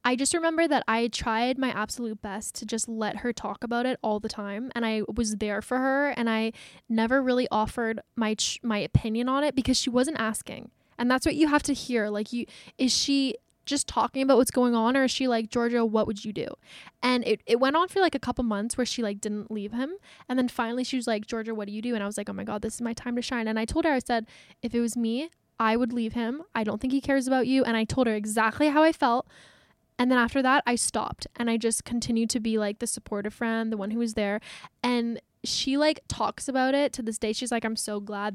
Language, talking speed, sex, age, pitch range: English, 265 wpm, female, 10-29, 220-260 Hz